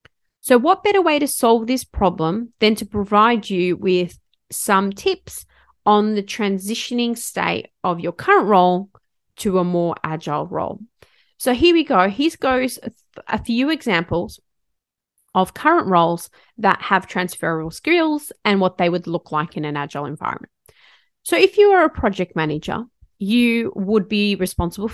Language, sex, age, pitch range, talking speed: English, female, 30-49, 180-260 Hz, 155 wpm